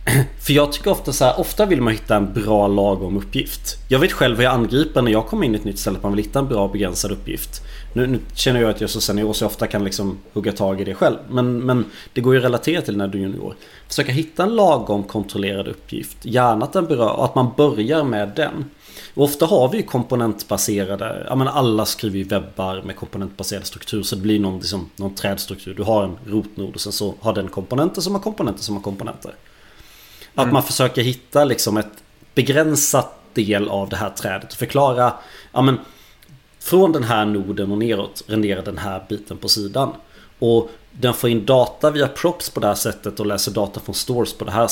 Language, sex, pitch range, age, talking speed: Swedish, male, 100-130 Hz, 30-49, 225 wpm